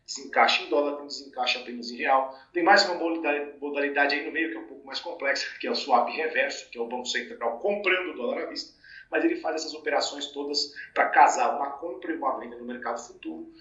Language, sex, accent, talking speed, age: Portuguese, male, Brazilian, 240 wpm, 40-59